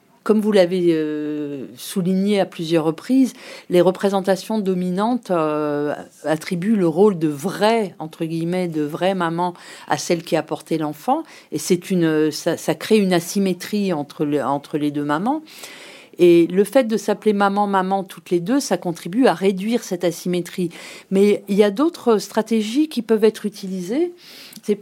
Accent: French